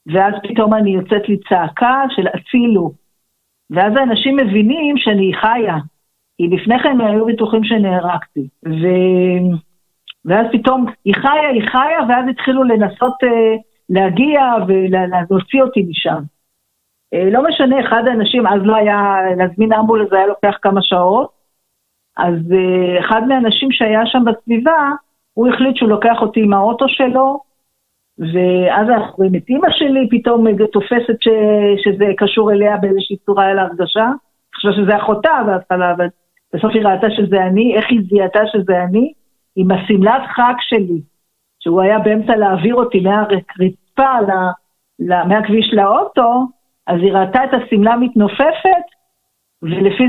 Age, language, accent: 50-69, Hebrew, native